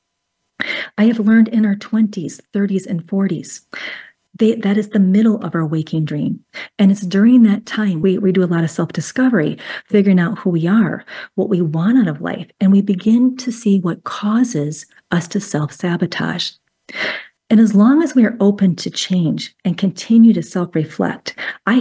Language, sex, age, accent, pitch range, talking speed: English, female, 40-59, American, 175-225 Hz, 175 wpm